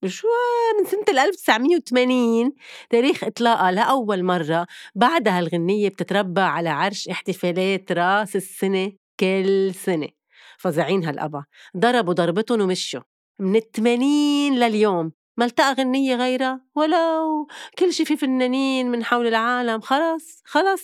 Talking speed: 110 wpm